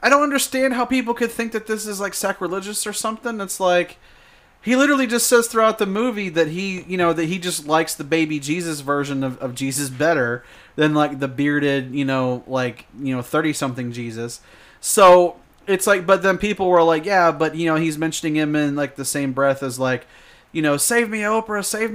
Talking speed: 215 wpm